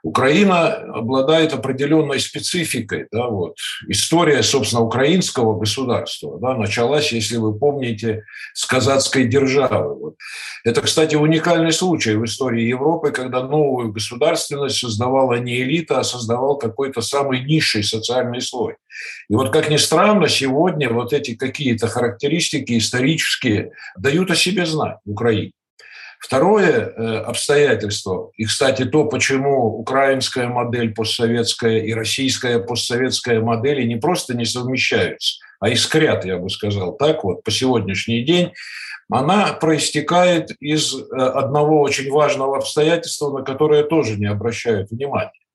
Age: 50-69